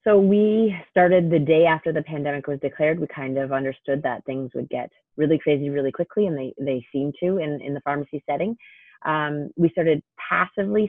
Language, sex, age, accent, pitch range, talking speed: English, female, 30-49, American, 140-165 Hz, 200 wpm